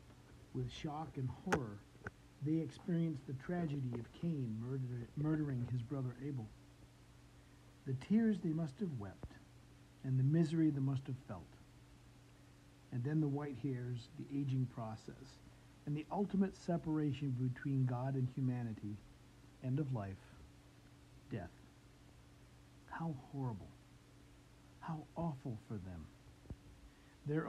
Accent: American